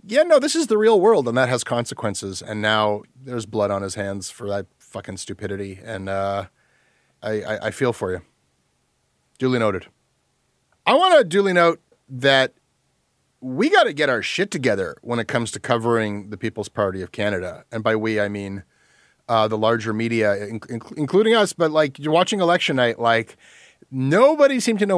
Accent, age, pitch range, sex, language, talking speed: American, 30-49, 110-160 Hz, male, English, 185 wpm